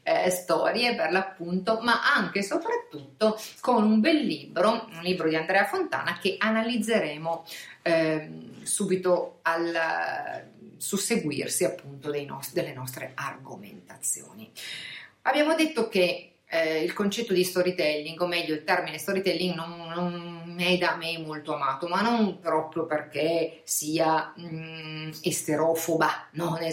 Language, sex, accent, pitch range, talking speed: Italian, female, native, 160-195 Hz, 125 wpm